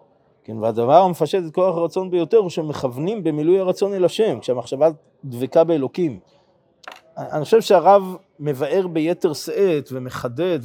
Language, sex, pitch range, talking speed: Hebrew, male, 140-180 Hz, 130 wpm